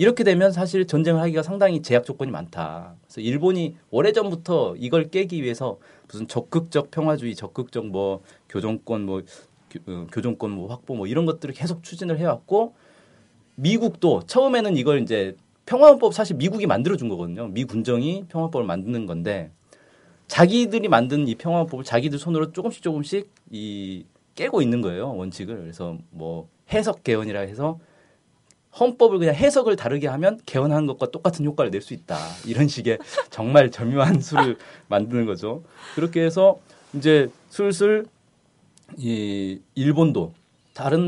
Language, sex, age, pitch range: Korean, male, 40-59, 115-175 Hz